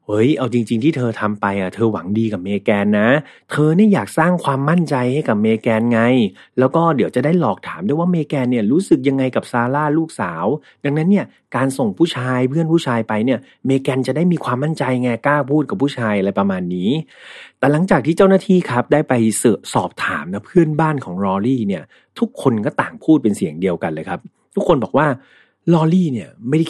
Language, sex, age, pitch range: Thai, male, 30-49, 110-155 Hz